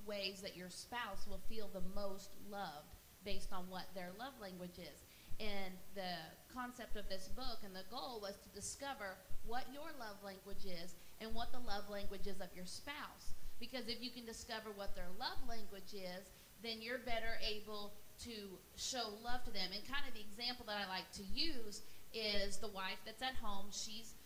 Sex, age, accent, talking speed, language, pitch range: female, 30-49, American, 195 wpm, English, 195-235 Hz